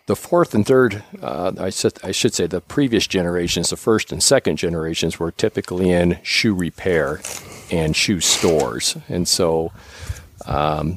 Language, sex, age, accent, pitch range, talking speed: English, male, 50-69, American, 75-90 Hz, 155 wpm